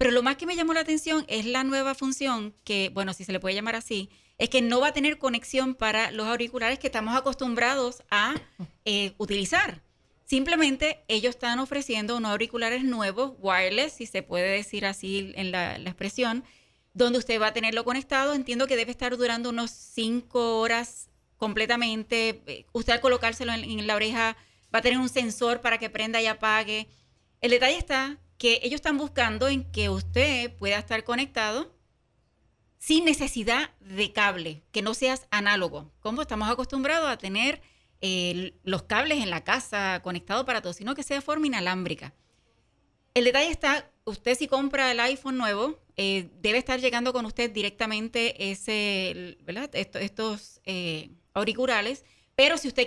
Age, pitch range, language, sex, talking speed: 20-39, 205-260 Hz, Spanish, female, 175 wpm